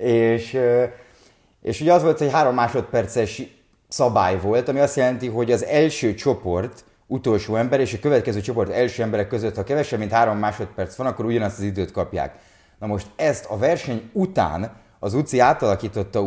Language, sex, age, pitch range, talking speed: Hungarian, male, 30-49, 100-120 Hz, 170 wpm